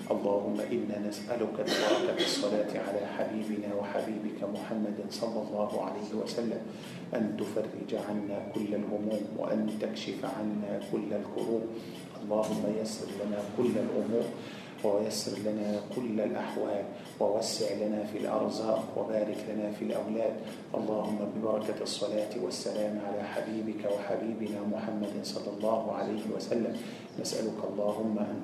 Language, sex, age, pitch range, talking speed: Malay, male, 40-59, 105-110 Hz, 115 wpm